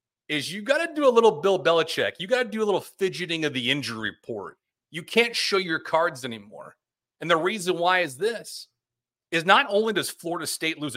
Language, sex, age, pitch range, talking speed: English, male, 40-59, 130-180 Hz, 215 wpm